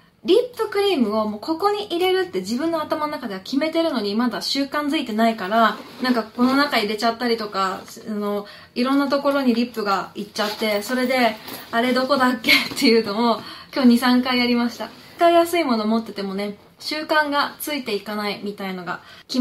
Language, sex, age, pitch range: Japanese, female, 20-39, 210-270 Hz